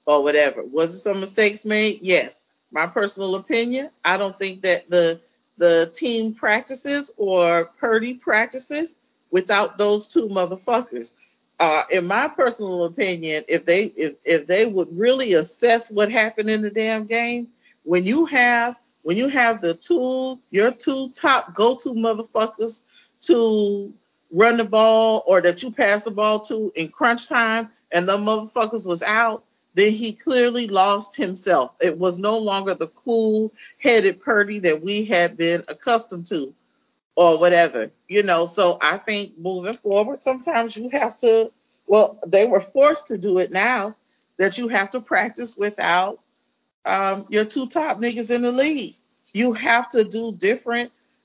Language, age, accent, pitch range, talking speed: English, 40-59, American, 185-235 Hz, 160 wpm